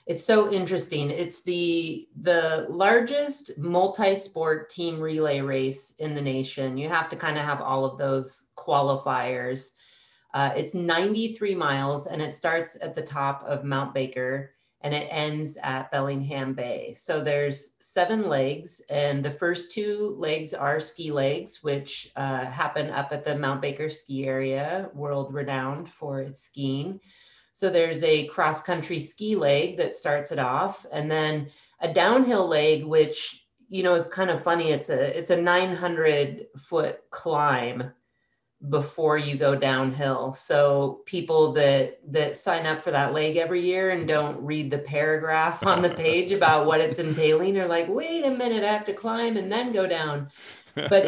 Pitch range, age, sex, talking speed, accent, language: 140-175 Hz, 30-49, female, 165 wpm, American, English